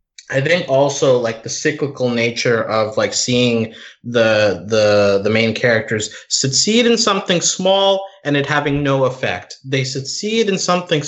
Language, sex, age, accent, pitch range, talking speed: English, male, 30-49, American, 115-160 Hz, 150 wpm